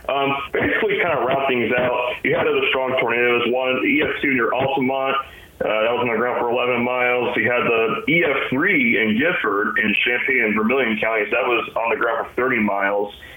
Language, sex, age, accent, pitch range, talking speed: English, male, 30-49, American, 120-170 Hz, 200 wpm